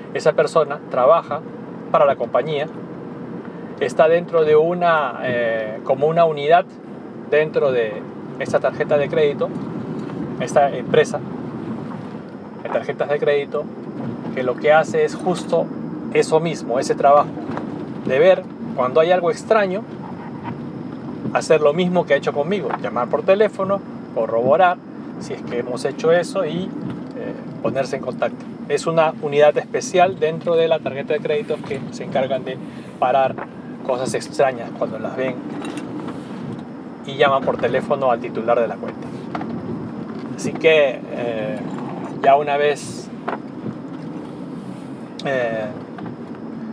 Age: 40-59